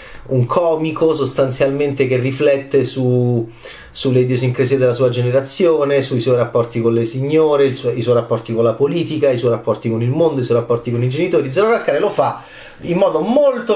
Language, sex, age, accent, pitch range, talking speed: Italian, male, 30-49, native, 130-185 Hz, 190 wpm